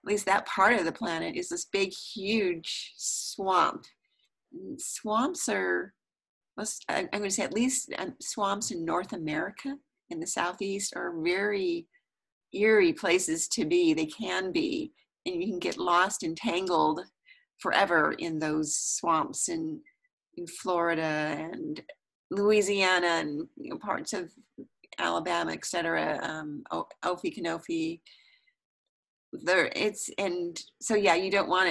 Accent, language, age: American, English, 40-59